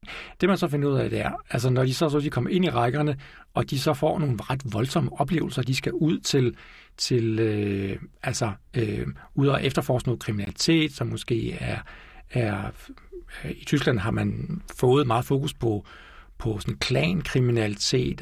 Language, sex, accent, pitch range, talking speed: Danish, male, native, 115-150 Hz, 175 wpm